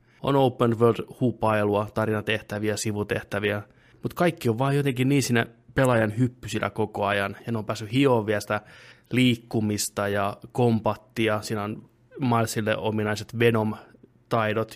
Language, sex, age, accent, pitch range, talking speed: Finnish, male, 20-39, native, 110-120 Hz, 120 wpm